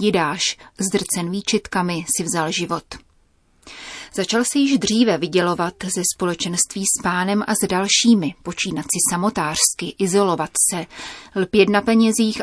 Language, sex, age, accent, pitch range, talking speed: Czech, female, 30-49, native, 180-220 Hz, 125 wpm